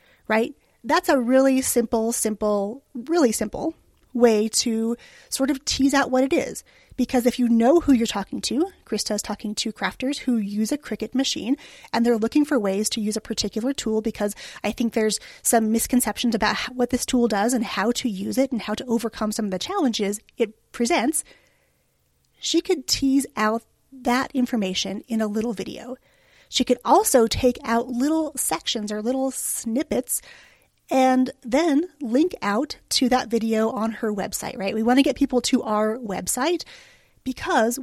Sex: female